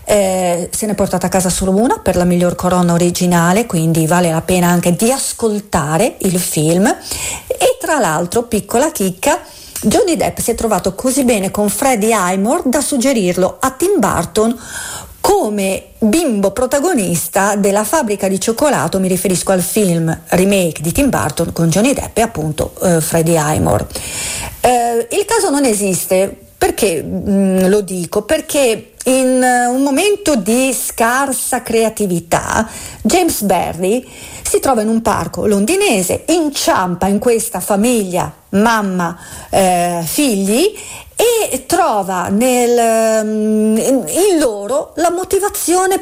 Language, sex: Italian, female